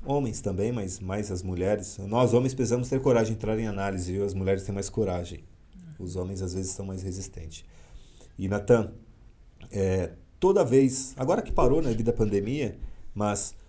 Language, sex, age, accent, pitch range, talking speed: Portuguese, male, 40-59, Brazilian, 95-130 Hz, 180 wpm